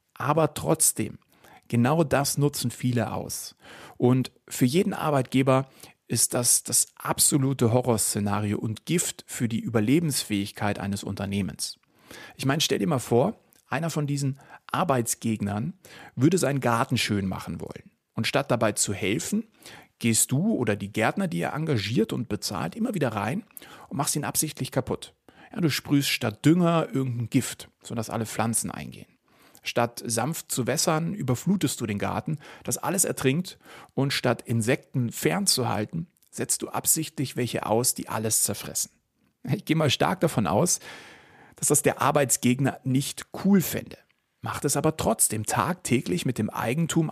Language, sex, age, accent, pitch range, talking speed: German, male, 40-59, German, 110-150 Hz, 150 wpm